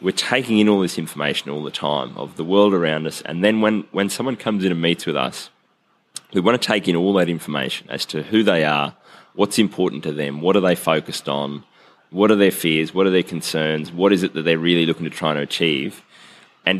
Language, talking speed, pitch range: English, 240 wpm, 80-100 Hz